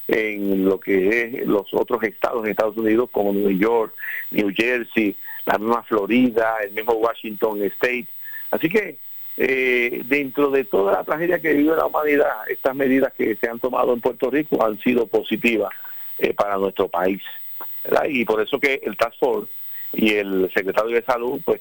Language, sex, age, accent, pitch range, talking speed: Spanish, male, 50-69, Venezuelan, 110-145 Hz, 180 wpm